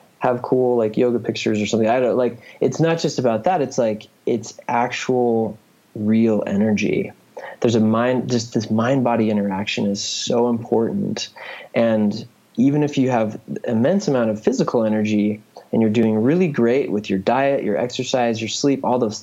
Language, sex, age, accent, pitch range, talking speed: English, male, 20-39, American, 105-120 Hz, 175 wpm